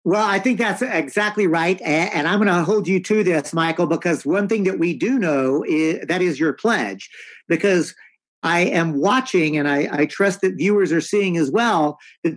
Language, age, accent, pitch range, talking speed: English, 50-69, American, 150-205 Hz, 205 wpm